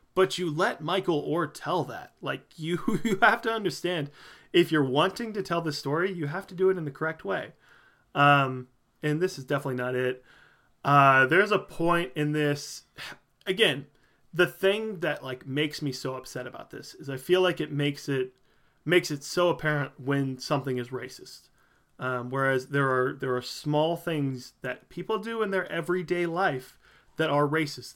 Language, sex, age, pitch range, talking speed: English, male, 30-49, 130-180 Hz, 185 wpm